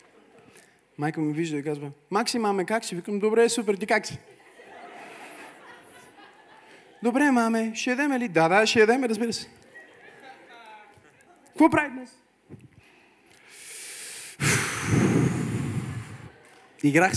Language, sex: Bulgarian, male